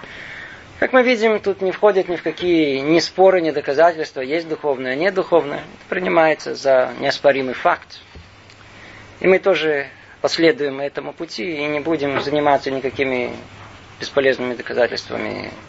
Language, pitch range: Russian, 120-195 Hz